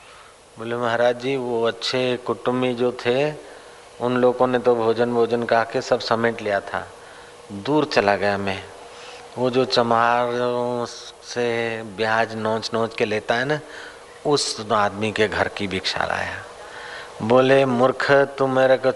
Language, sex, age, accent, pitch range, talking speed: Hindi, male, 40-59, native, 115-140 Hz, 150 wpm